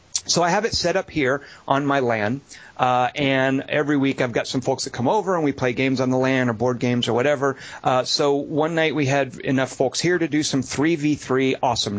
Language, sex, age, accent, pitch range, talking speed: English, male, 30-49, American, 120-150 Hz, 235 wpm